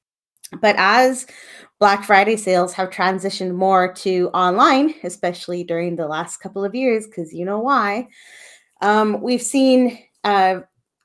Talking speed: 135 wpm